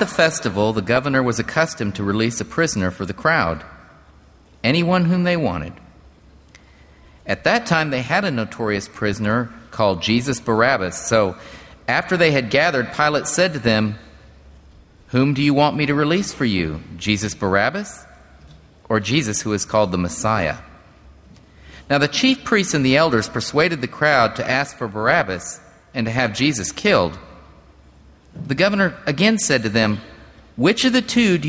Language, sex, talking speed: English, male, 160 wpm